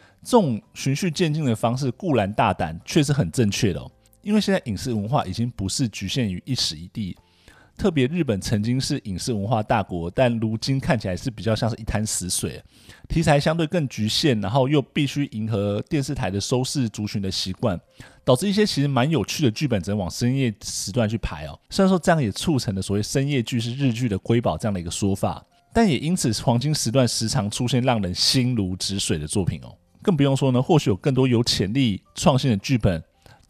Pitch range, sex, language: 100-135 Hz, male, Chinese